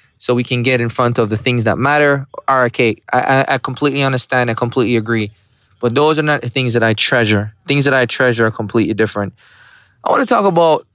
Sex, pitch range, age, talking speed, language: male, 125-175 Hz, 20-39, 230 wpm, English